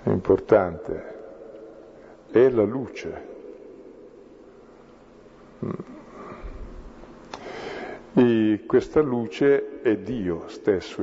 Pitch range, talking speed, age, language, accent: 95-130 Hz, 60 wpm, 50-69, Italian, native